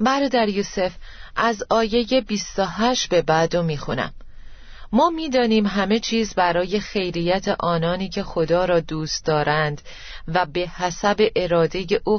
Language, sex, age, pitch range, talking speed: Persian, female, 30-49, 165-215 Hz, 125 wpm